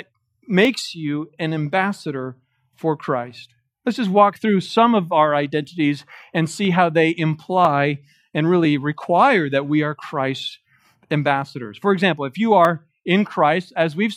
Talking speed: 155 wpm